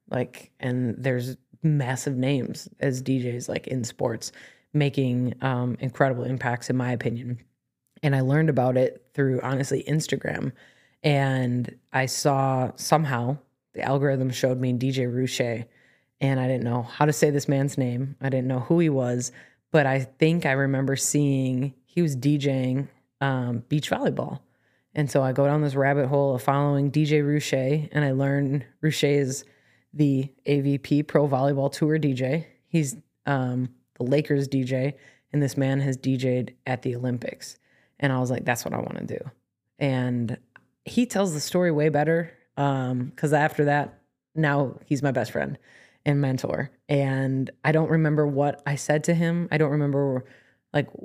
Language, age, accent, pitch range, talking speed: English, 20-39, American, 130-145 Hz, 165 wpm